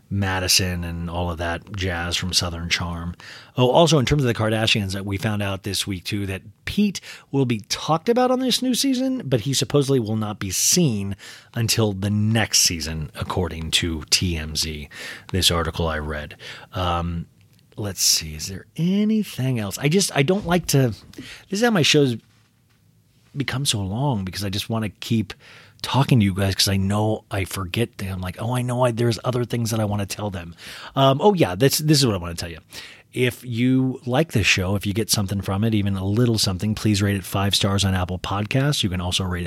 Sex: male